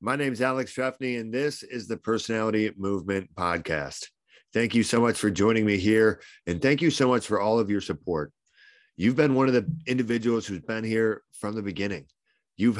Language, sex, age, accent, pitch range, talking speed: English, male, 40-59, American, 95-115 Hz, 200 wpm